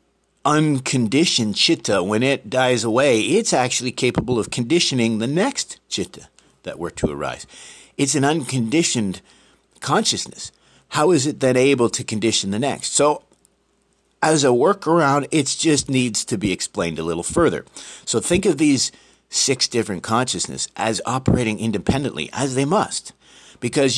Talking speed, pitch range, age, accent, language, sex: 145 wpm, 105-150 Hz, 50-69, American, English, male